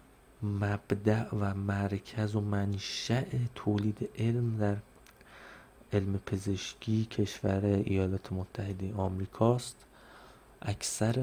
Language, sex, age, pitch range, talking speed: Persian, male, 30-49, 100-110 Hz, 80 wpm